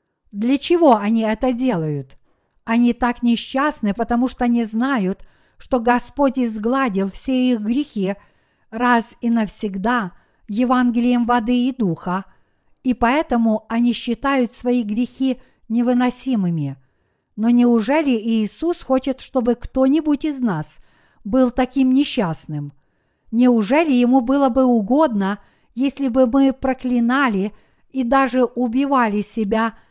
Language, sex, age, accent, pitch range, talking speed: Russian, female, 50-69, native, 220-260 Hz, 110 wpm